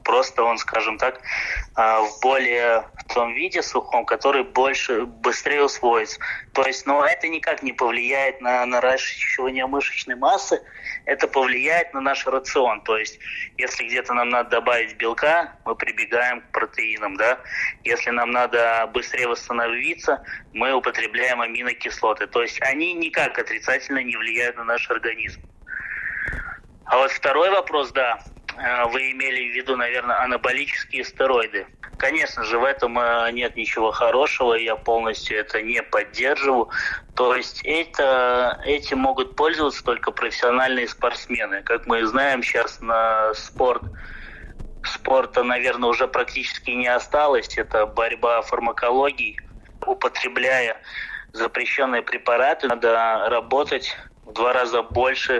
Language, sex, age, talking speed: Russian, male, 20-39, 125 wpm